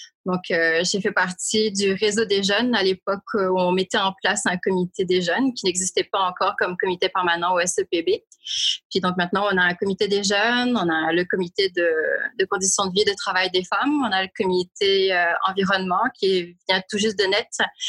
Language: French